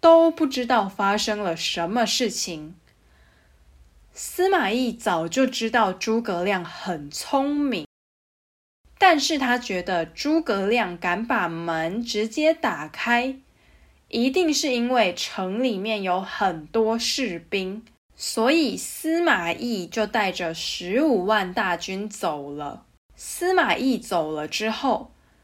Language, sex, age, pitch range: English, female, 10-29, 180-255 Hz